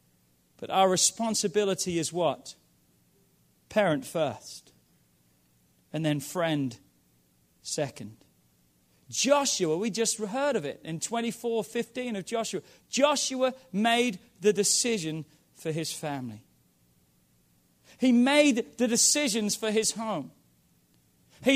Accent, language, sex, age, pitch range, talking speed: British, English, male, 40-59, 155-260 Hz, 105 wpm